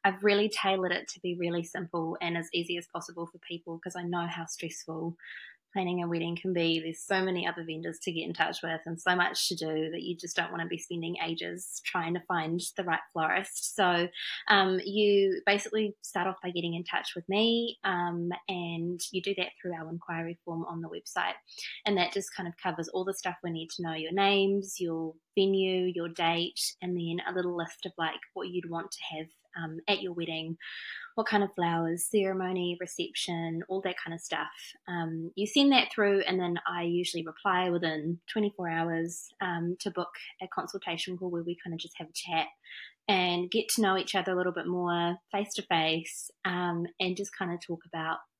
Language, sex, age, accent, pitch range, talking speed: English, female, 20-39, Australian, 170-195 Hz, 215 wpm